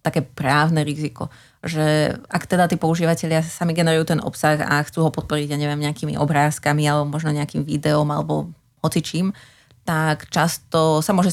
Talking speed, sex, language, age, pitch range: 160 wpm, female, Slovak, 20-39, 150-165 Hz